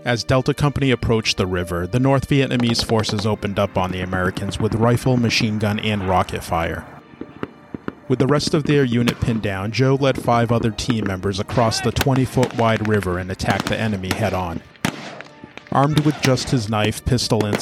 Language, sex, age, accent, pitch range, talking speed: English, male, 40-59, American, 100-130 Hz, 180 wpm